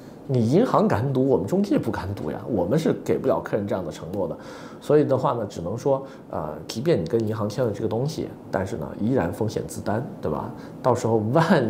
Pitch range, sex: 95-130 Hz, male